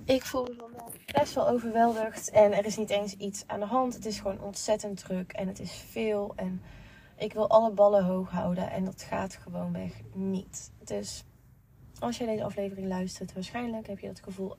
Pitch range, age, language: 195-230 Hz, 20-39, Dutch